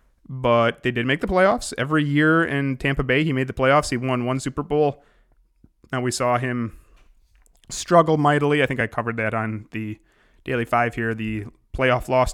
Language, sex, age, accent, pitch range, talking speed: English, male, 30-49, American, 115-145 Hz, 190 wpm